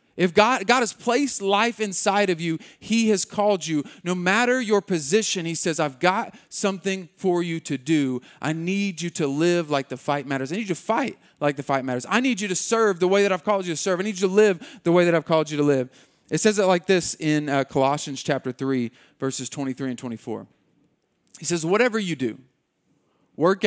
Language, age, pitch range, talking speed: English, 30-49, 145-190 Hz, 230 wpm